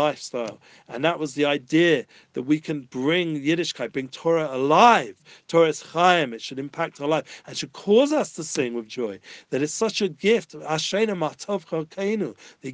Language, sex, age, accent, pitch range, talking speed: English, male, 40-59, British, 140-170 Hz, 170 wpm